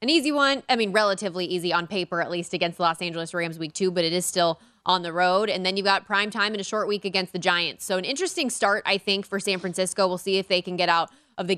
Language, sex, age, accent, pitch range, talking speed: English, female, 20-39, American, 175-220 Hz, 290 wpm